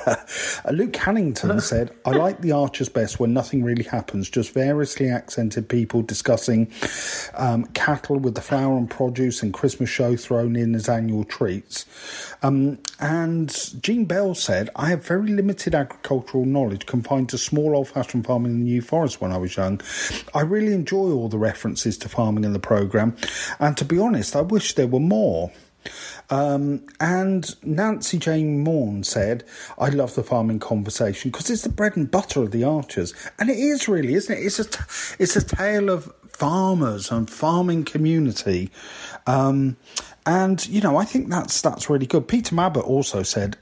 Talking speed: 175 wpm